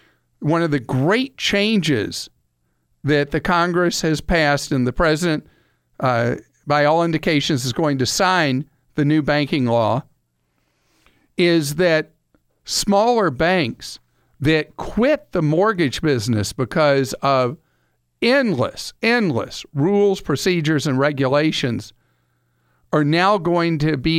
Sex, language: male, English